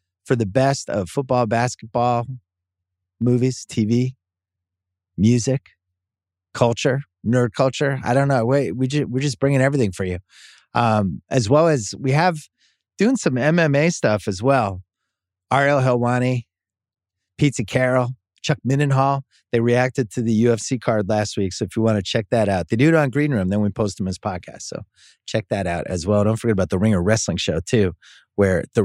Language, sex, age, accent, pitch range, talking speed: English, male, 30-49, American, 100-145 Hz, 175 wpm